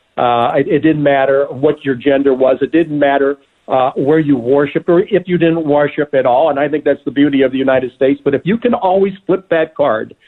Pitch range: 135-165 Hz